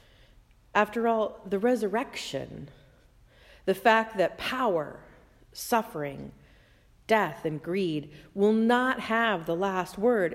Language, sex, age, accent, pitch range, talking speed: English, female, 40-59, American, 150-230 Hz, 105 wpm